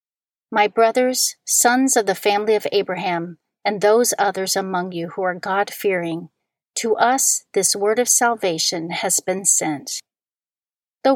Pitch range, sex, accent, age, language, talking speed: 185-250 Hz, female, American, 40-59, English, 145 wpm